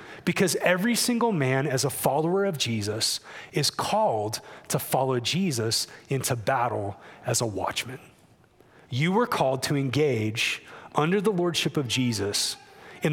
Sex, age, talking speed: male, 30-49, 135 wpm